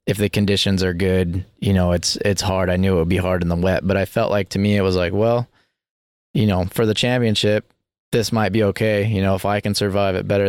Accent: American